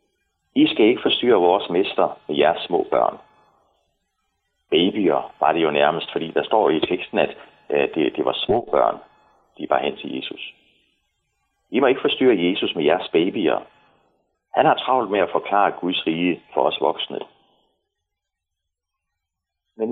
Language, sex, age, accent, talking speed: Danish, male, 40-59, native, 150 wpm